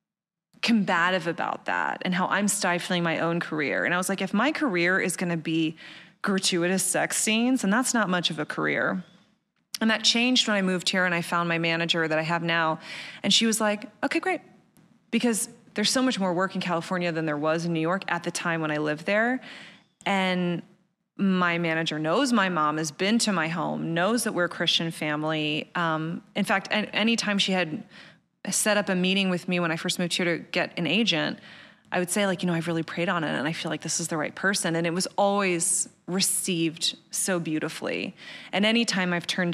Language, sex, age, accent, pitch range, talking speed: English, female, 20-39, American, 170-210 Hz, 215 wpm